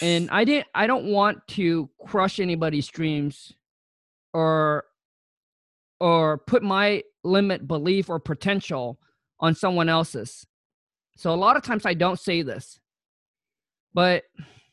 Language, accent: English, American